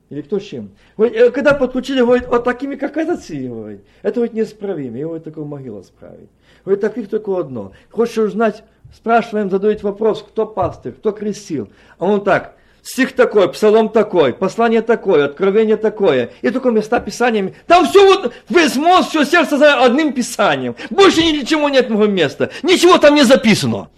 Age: 50-69